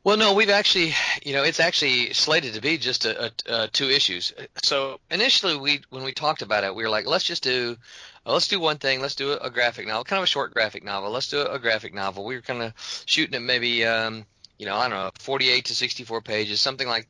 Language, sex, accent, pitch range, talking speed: English, male, American, 110-145 Hz, 260 wpm